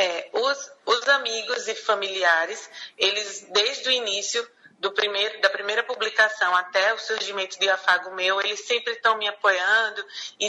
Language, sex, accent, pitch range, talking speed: Portuguese, female, Brazilian, 195-235 Hz, 155 wpm